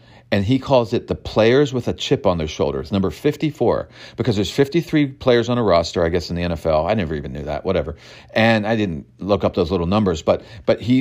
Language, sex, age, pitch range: English, male, 40-59, 100-140 Hz